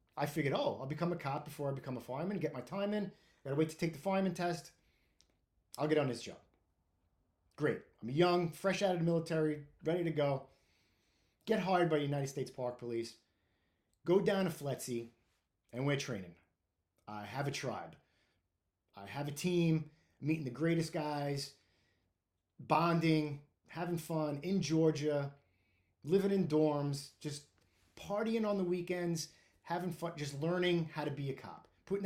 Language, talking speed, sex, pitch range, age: English, 170 wpm, male, 105-165 Hz, 30-49